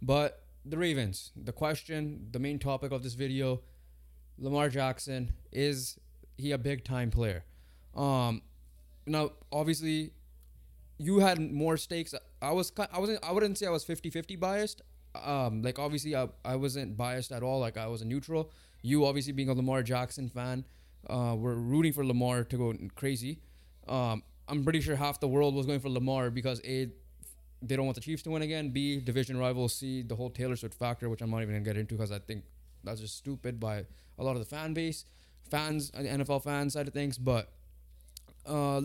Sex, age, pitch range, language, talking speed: male, 20-39, 115-150 Hz, English, 195 wpm